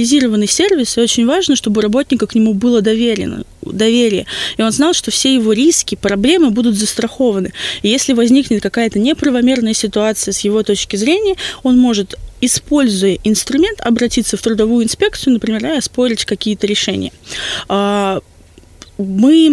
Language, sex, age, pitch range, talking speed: Russian, female, 20-39, 215-265 Hz, 140 wpm